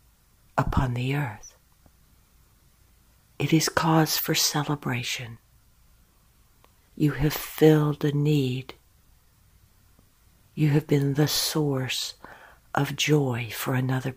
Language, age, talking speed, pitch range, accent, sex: English, 60-79, 95 wpm, 115-155 Hz, American, female